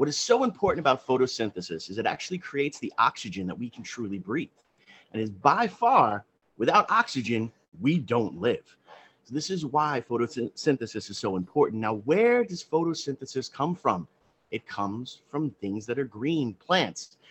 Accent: American